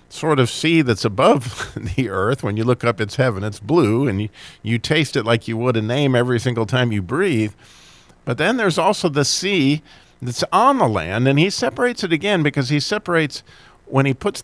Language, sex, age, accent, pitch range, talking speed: English, male, 50-69, American, 110-150 Hz, 210 wpm